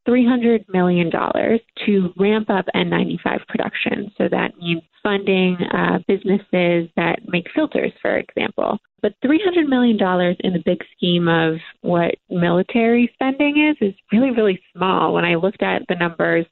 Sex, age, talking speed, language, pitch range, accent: female, 20-39, 145 wpm, English, 175-220 Hz, American